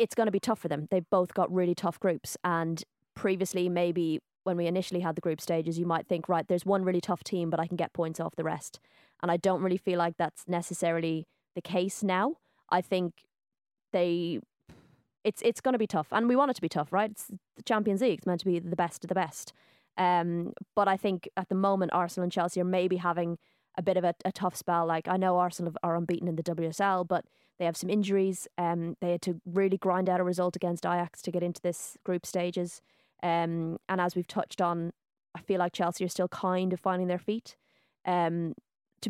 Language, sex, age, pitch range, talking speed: English, female, 20-39, 170-195 Hz, 230 wpm